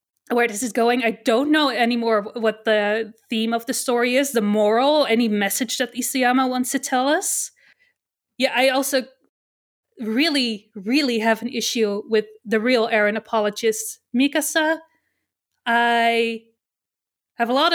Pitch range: 230-280 Hz